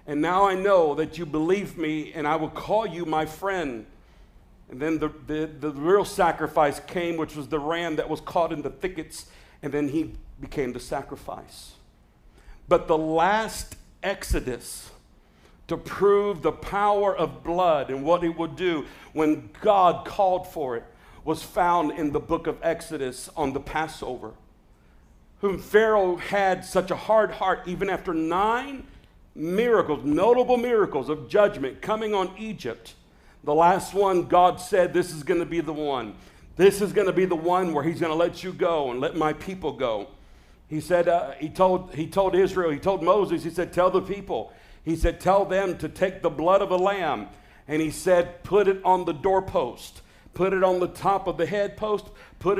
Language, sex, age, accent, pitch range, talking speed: English, male, 50-69, American, 155-190 Hz, 185 wpm